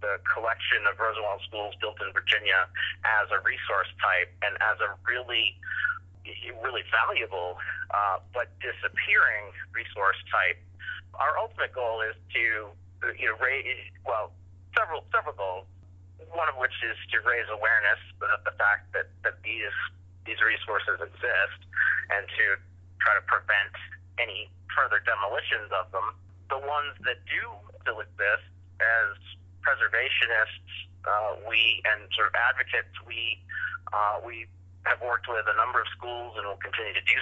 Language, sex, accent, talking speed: English, male, American, 145 wpm